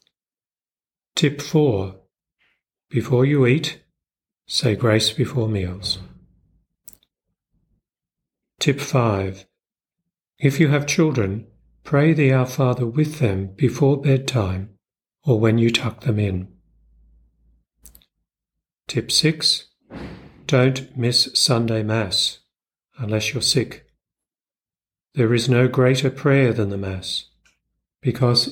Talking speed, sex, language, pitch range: 100 wpm, male, English, 100-130 Hz